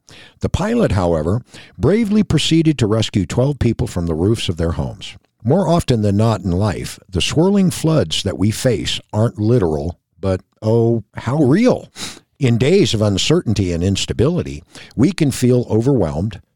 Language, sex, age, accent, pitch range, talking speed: English, male, 60-79, American, 95-140 Hz, 155 wpm